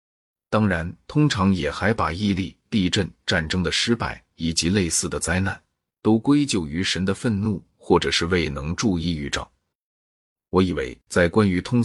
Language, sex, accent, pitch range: Chinese, male, native, 85-105 Hz